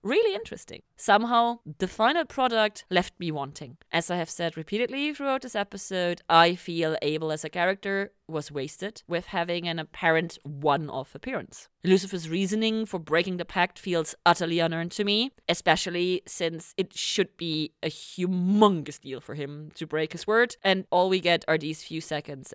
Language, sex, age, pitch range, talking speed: English, female, 30-49, 160-225 Hz, 170 wpm